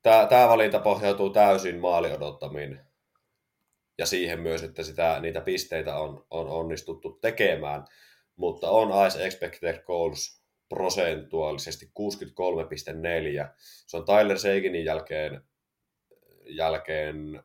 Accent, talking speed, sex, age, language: native, 105 wpm, male, 20-39, Finnish